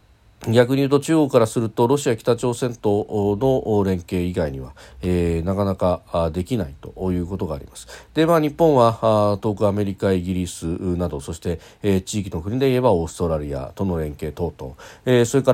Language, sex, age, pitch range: Japanese, male, 40-59, 85-115 Hz